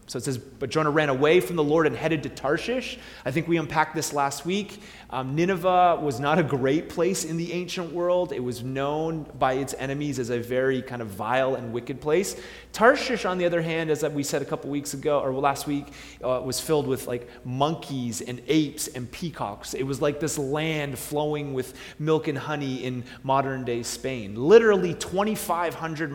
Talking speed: 200 wpm